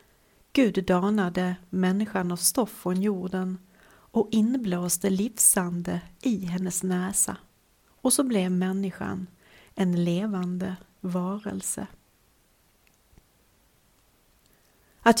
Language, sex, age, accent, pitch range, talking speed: Swedish, female, 40-59, native, 185-215 Hz, 85 wpm